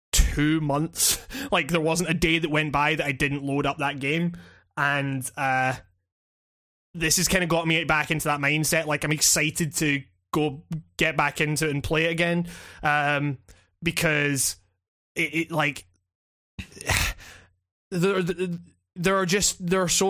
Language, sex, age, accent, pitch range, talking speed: English, male, 20-39, British, 135-170 Hz, 160 wpm